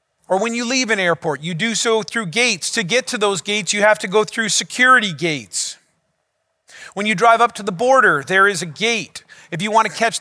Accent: American